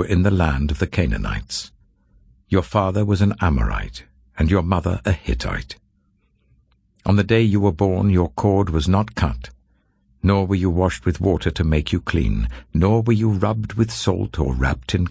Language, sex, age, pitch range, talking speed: English, male, 60-79, 70-95 Hz, 185 wpm